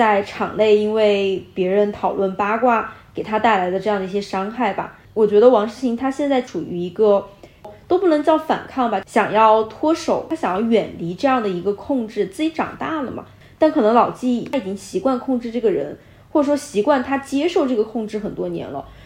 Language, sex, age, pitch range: Chinese, female, 20-39, 205-265 Hz